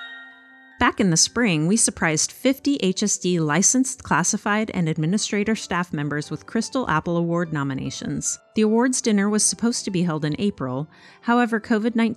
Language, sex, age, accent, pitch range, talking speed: English, female, 30-49, American, 160-220 Hz, 155 wpm